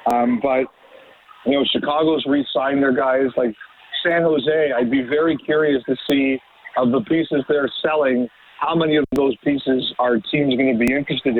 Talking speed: 180 wpm